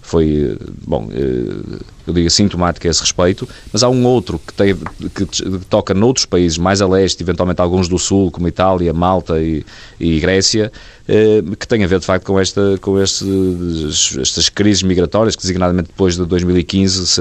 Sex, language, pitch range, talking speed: male, Portuguese, 85-105 Hz, 165 wpm